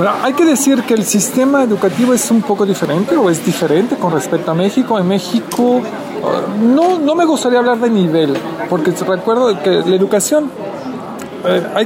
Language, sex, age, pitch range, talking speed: Spanish, male, 40-59, 175-225 Hz, 170 wpm